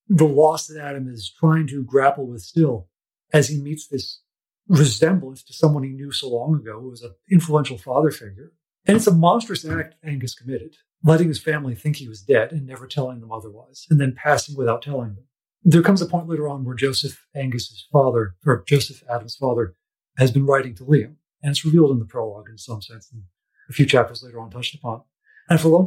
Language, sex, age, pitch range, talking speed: English, male, 40-59, 125-155 Hz, 215 wpm